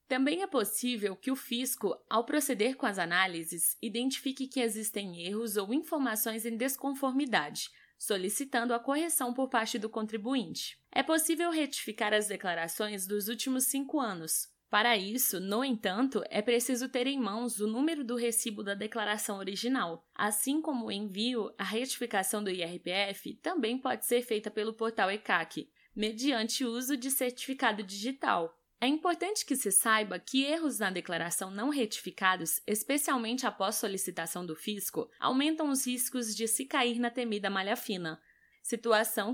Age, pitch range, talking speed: 10-29, 205-265 Hz, 150 wpm